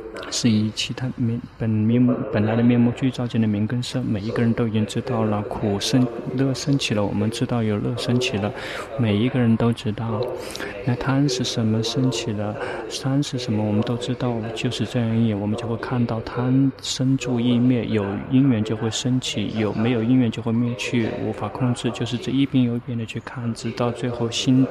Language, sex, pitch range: Chinese, male, 115-130 Hz